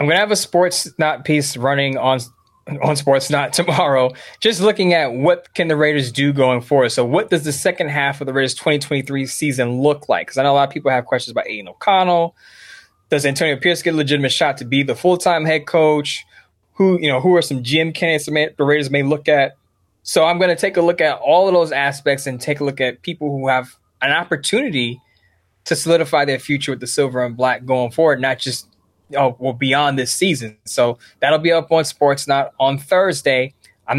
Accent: American